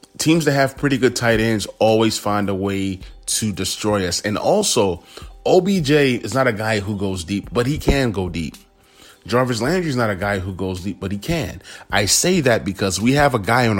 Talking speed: 220 wpm